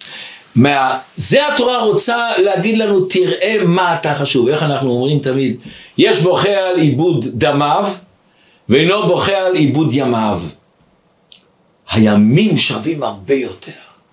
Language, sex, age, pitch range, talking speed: Hebrew, male, 60-79, 135-195 Hz, 120 wpm